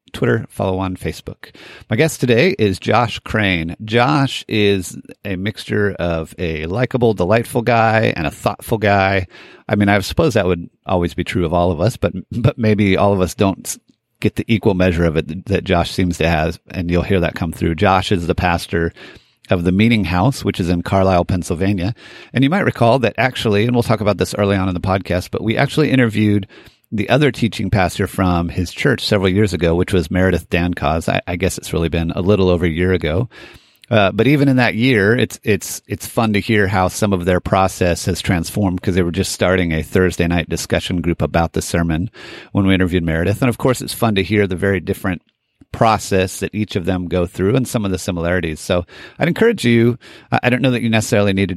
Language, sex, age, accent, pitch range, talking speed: English, male, 40-59, American, 90-110 Hz, 220 wpm